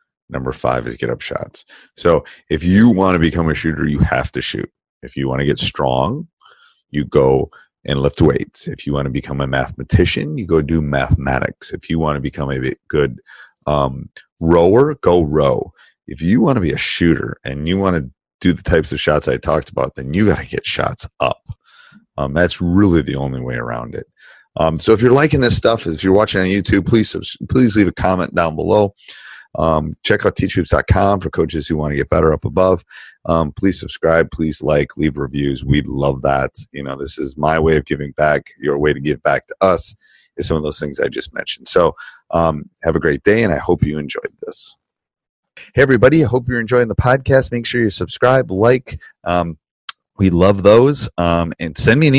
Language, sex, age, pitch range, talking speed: English, male, 30-49, 75-115 Hz, 215 wpm